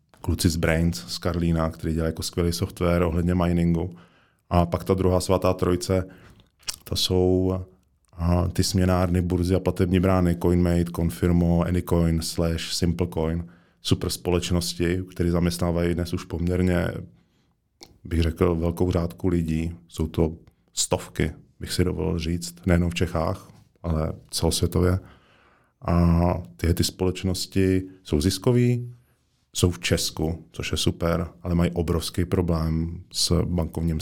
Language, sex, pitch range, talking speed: Czech, male, 85-95 Hz, 130 wpm